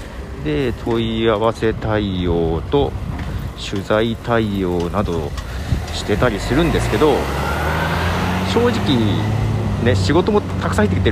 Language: Japanese